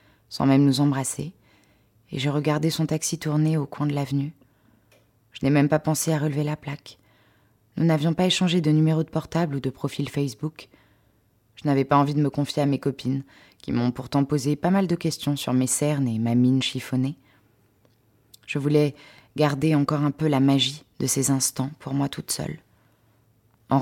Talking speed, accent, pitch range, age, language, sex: 190 wpm, French, 125-155 Hz, 20-39, French, female